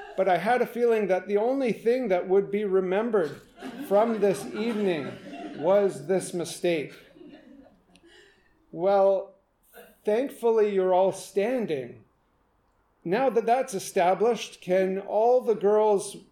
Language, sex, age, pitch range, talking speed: English, male, 40-59, 145-190 Hz, 120 wpm